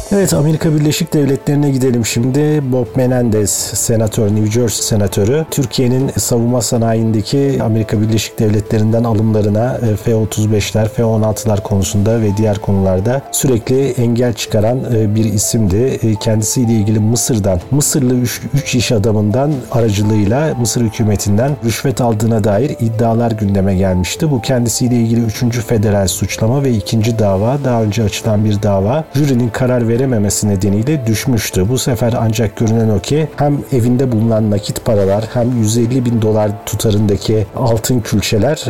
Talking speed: 130 wpm